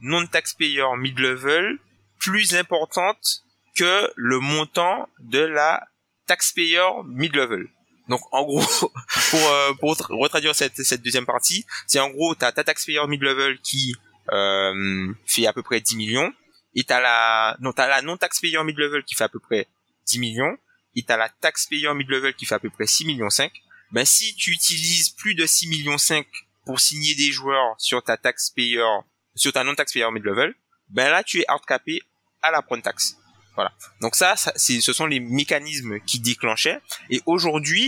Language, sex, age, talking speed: French, male, 20-39, 170 wpm